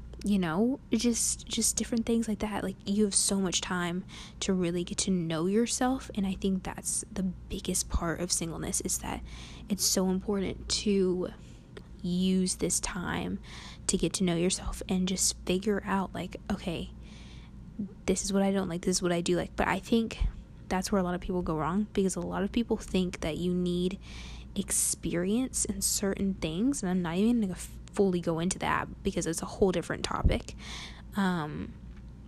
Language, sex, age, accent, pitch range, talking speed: English, female, 10-29, American, 175-205 Hz, 190 wpm